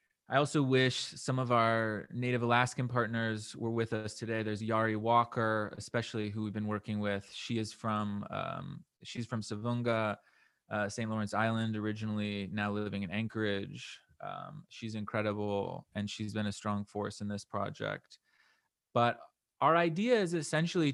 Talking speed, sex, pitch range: 160 wpm, male, 105-120 Hz